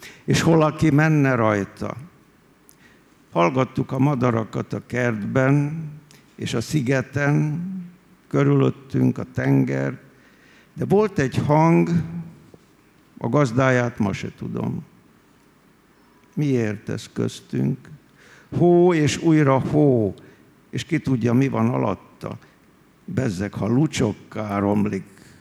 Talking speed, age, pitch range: 95 wpm, 60-79, 105-150 Hz